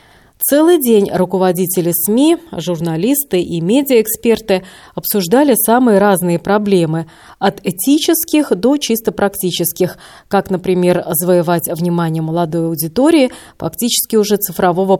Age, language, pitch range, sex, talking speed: 30-49, Russian, 180-235 Hz, female, 100 wpm